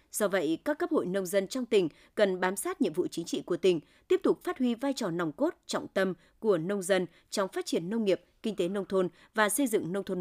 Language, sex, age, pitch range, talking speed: Vietnamese, female, 20-39, 190-295 Hz, 265 wpm